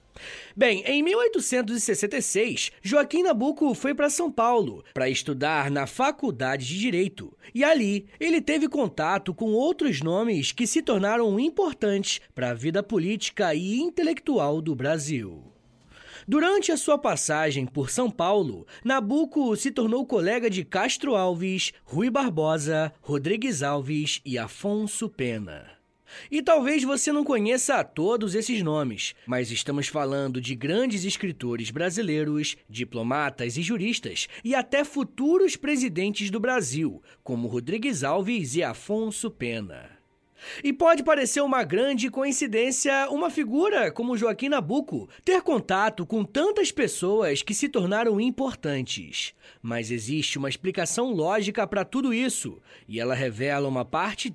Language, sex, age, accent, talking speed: Portuguese, male, 20-39, Brazilian, 130 wpm